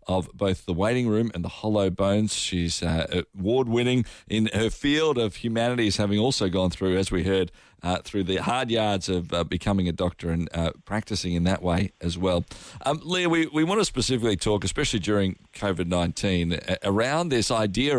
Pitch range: 95-125 Hz